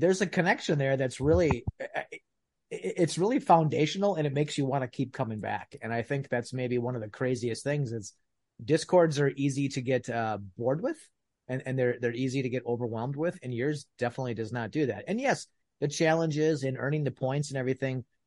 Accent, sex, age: American, male, 30-49